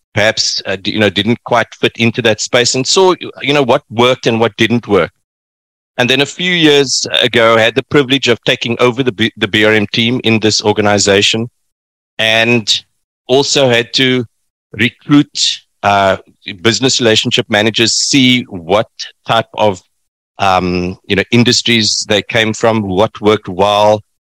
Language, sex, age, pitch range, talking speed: English, male, 50-69, 100-125 Hz, 160 wpm